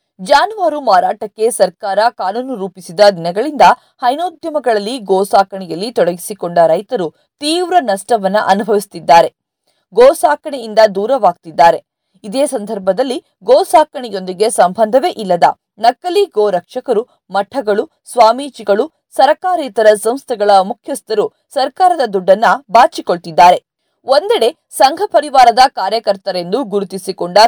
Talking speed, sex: 75 wpm, female